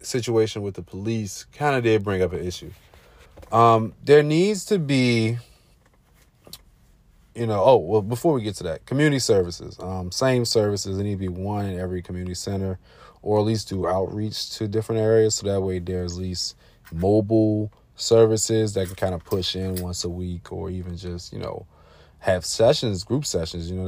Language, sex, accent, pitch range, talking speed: English, male, American, 90-115 Hz, 190 wpm